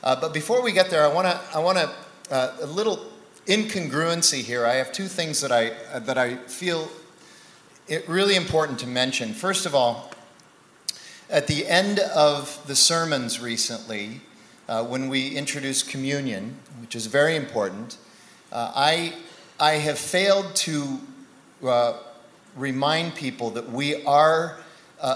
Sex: male